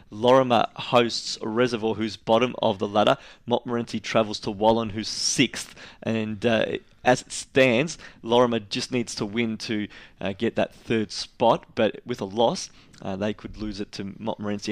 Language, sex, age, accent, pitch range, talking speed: English, male, 20-39, Australian, 110-130 Hz, 165 wpm